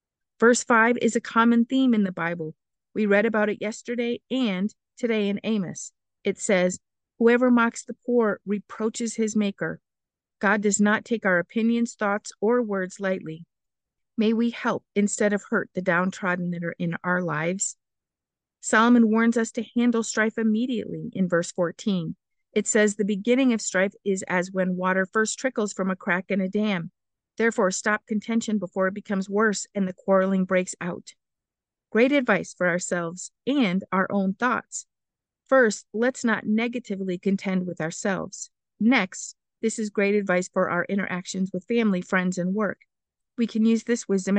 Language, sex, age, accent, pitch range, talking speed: English, female, 50-69, American, 185-230 Hz, 165 wpm